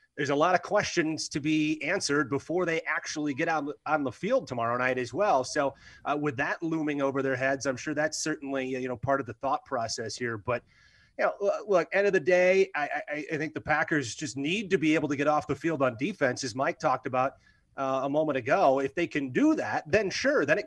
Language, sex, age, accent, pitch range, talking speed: English, male, 30-49, American, 135-185 Hz, 240 wpm